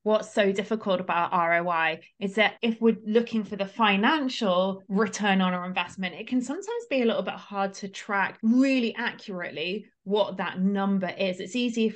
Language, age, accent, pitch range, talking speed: English, 30-49, British, 190-225 Hz, 180 wpm